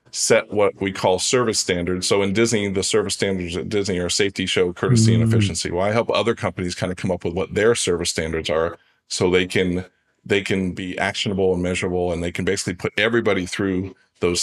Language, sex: English, male